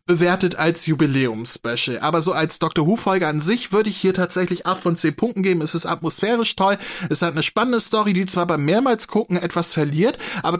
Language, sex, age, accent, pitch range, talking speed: German, male, 20-39, German, 160-210 Hz, 200 wpm